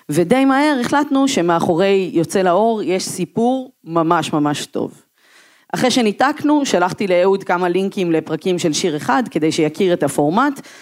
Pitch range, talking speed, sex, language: 165-230 Hz, 140 wpm, female, Hebrew